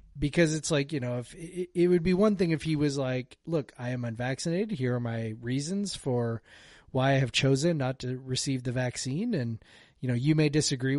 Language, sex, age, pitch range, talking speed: English, male, 30-49, 130-165 Hz, 215 wpm